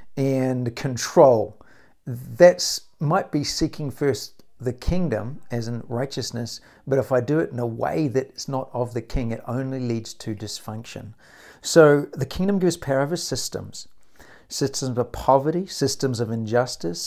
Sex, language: male, English